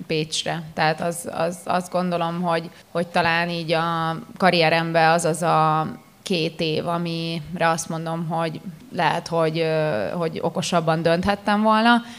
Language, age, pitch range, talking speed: Hungarian, 20-39, 165-185 Hz, 120 wpm